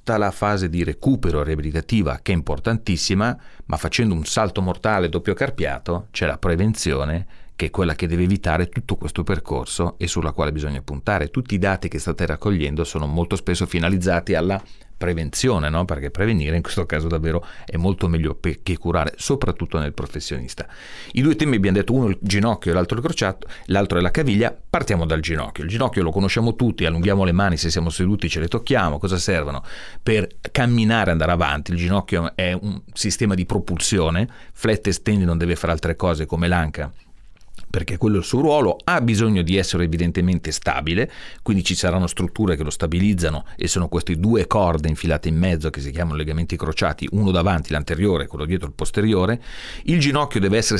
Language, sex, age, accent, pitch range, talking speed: Italian, male, 40-59, native, 80-105 Hz, 190 wpm